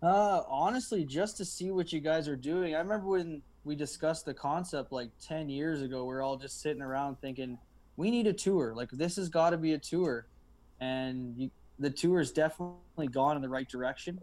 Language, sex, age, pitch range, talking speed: English, male, 20-39, 130-155 Hz, 205 wpm